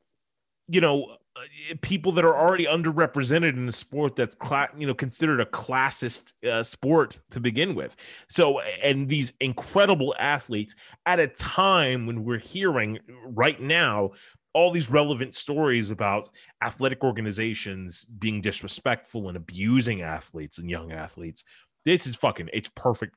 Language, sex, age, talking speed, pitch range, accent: English, male, 30-49, 140 wpm, 100-135 Hz, American